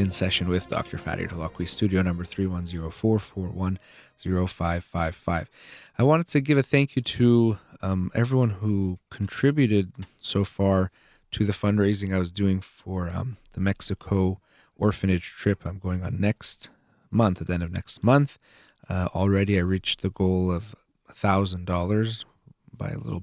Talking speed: 145 wpm